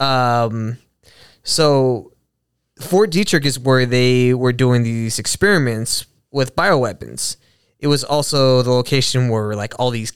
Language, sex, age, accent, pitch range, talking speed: English, male, 20-39, American, 115-140 Hz, 130 wpm